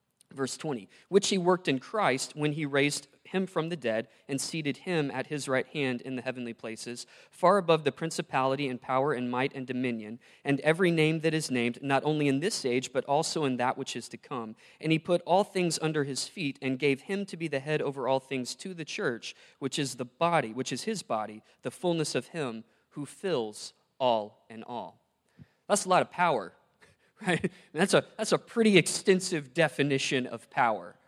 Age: 20-39